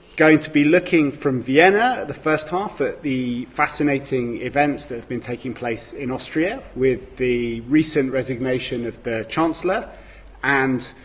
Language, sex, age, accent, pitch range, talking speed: English, male, 30-49, British, 115-140 Hz, 155 wpm